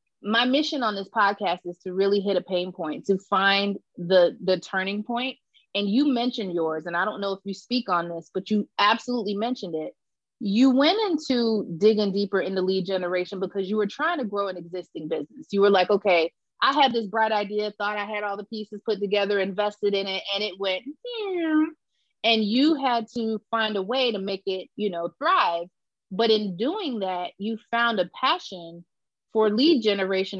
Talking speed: 200 wpm